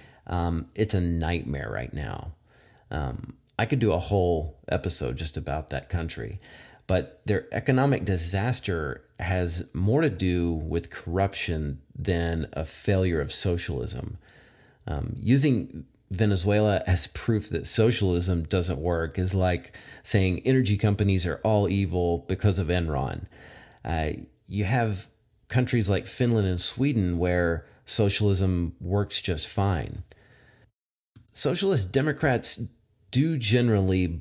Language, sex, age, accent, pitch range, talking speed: English, male, 30-49, American, 85-110 Hz, 120 wpm